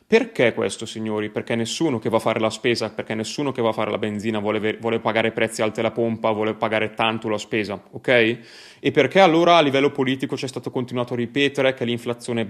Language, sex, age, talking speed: Italian, male, 20-39, 215 wpm